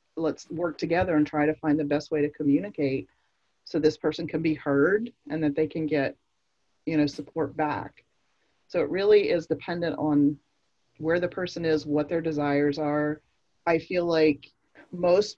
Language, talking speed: English, 175 wpm